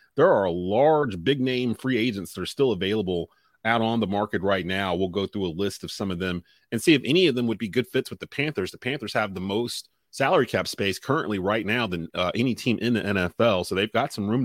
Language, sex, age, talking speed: English, male, 30-49, 255 wpm